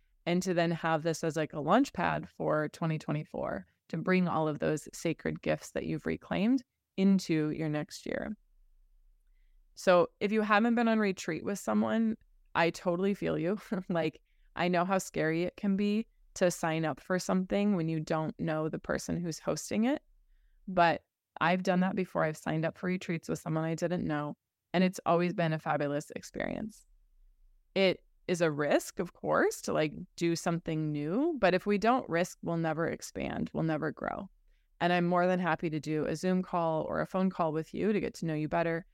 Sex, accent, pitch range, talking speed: female, American, 160-195 Hz, 195 wpm